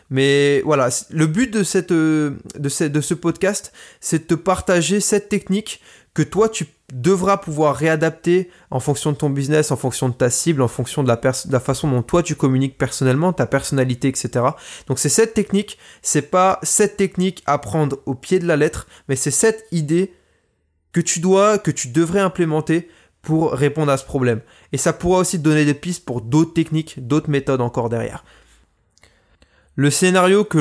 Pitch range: 135-175 Hz